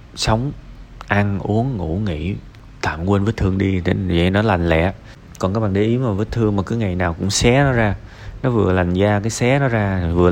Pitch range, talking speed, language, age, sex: 95-120 Hz, 235 wpm, Vietnamese, 20-39, male